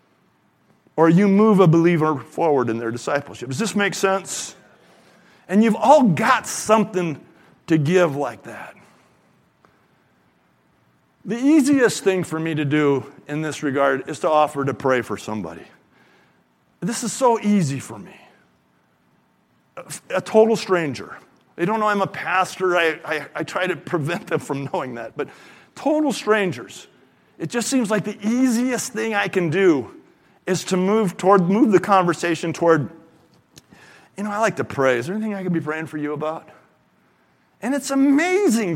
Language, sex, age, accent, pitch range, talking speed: English, male, 50-69, American, 155-225 Hz, 165 wpm